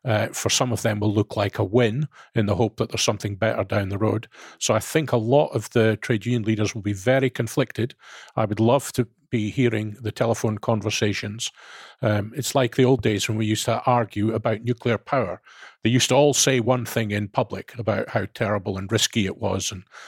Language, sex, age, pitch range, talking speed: English, male, 40-59, 105-125 Hz, 220 wpm